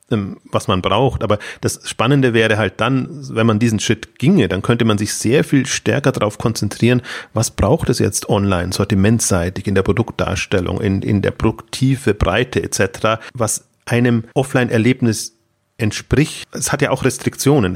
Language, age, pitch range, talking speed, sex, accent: German, 30-49, 105-130 Hz, 160 wpm, male, German